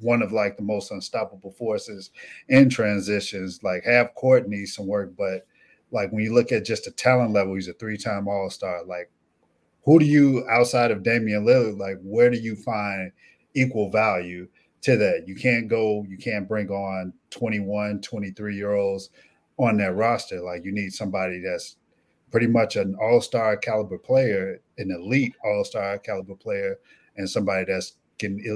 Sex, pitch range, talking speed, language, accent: male, 100-125 Hz, 170 wpm, English, American